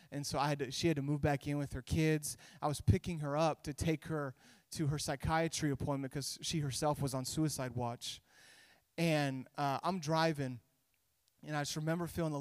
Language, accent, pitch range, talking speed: English, American, 135-155 Hz, 210 wpm